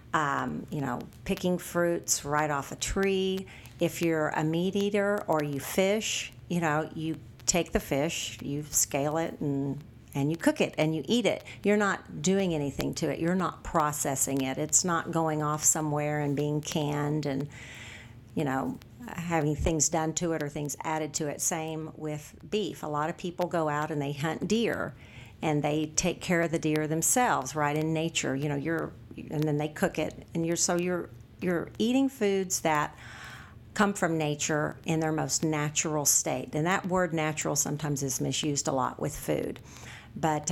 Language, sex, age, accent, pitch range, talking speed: English, female, 50-69, American, 145-170 Hz, 185 wpm